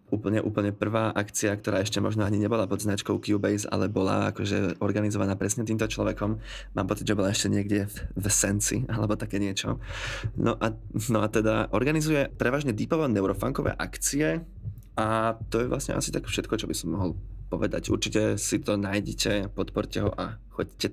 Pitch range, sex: 95-110 Hz, male